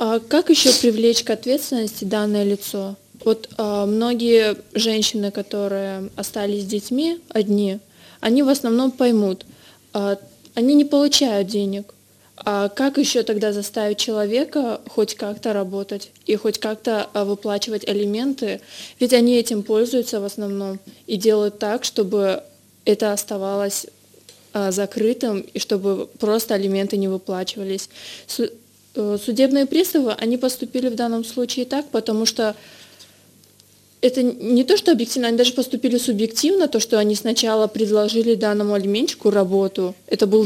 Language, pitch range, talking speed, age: Russian, 205-240 Hz, 125 wpm, 20-39